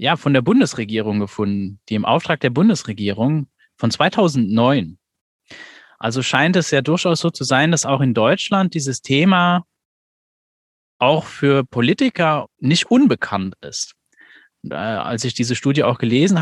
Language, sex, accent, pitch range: German, male, German, 120-160 Hz